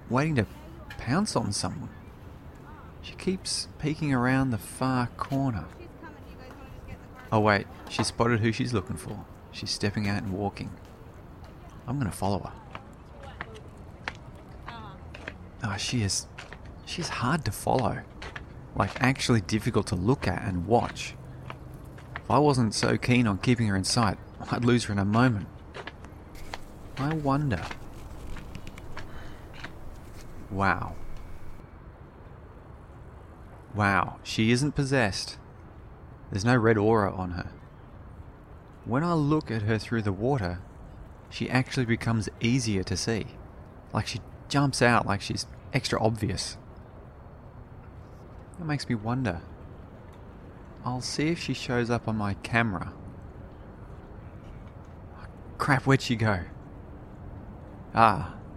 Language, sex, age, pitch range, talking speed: English, male, 30-49, 95-120 Hz, 115 wpm